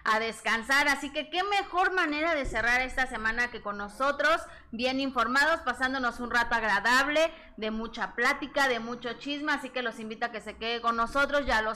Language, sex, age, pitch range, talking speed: Spanish, female, 20-39, 220-260 Hz, 195 wpm